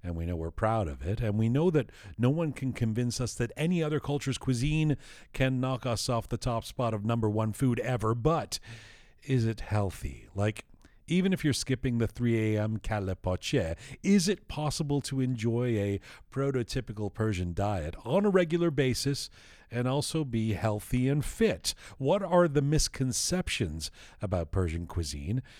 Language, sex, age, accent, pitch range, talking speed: English, male, 40-59, American, 105-145 Hz, 170 wpm